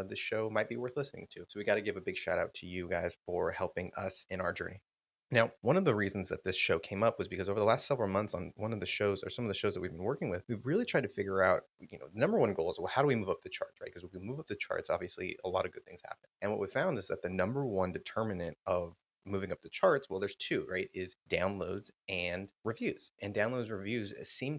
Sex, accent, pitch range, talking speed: male, American, 95-115 Hz, 290 wpm